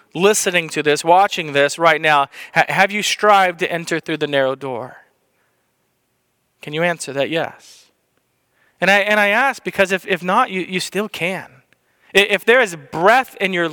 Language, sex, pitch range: English, male, 165-205 Hz